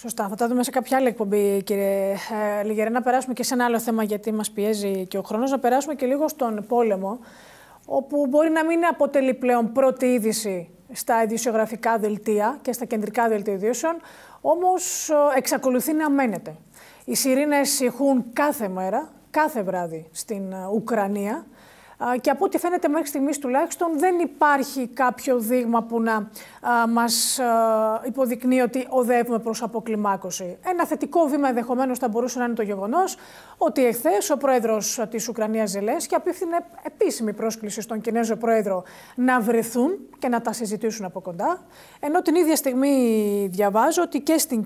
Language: Greek